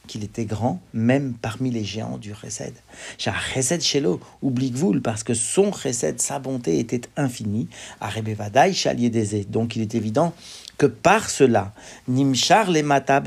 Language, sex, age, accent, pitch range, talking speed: French, male, 50-69, French, 120-140 Hz, 165 wpm